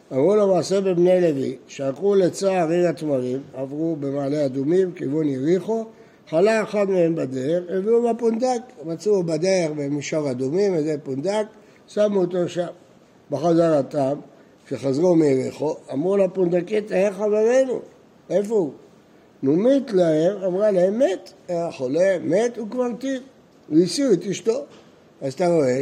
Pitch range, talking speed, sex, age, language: 155-210 Hz, 125 wpm, male, 60-79, Hebrew